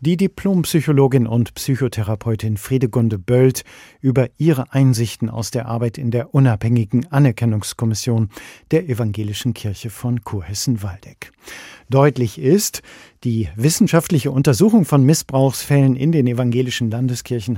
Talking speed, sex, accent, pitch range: 110 wpm, male, German, 115-140 Hz